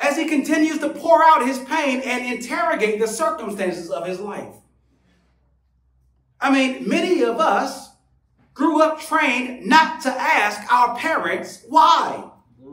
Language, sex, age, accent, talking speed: English, male, 40-59, American, 135 wpm